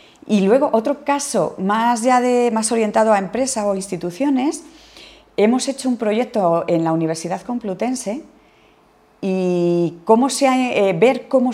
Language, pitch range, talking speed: Spanish, 165-220 Hz, 145 wpm